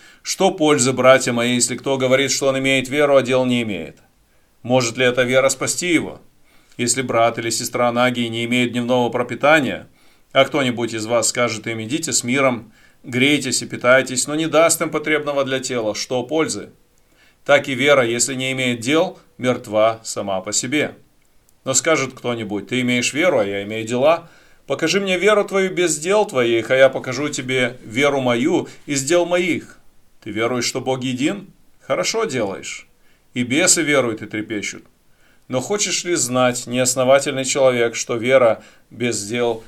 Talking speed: 165 wpm